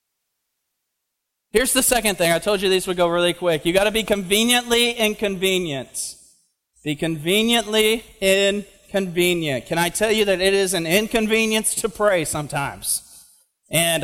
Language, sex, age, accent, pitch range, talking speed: English, male, 30-49, American, 205-265 Hz, 145 wpm